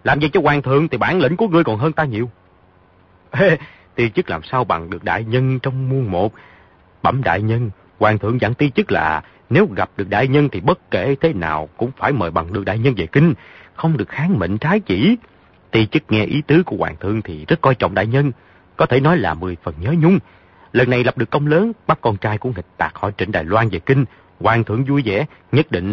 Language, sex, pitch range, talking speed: Vietnamese, male, 90-145 Hz, 245 wpm